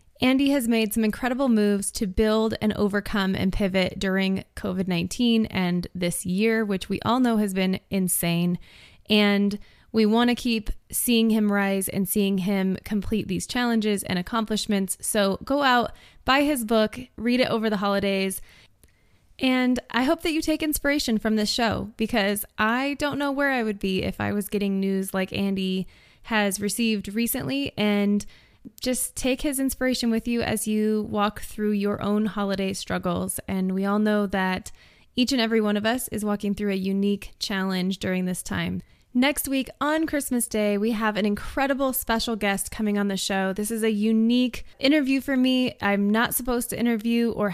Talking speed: 180 wpm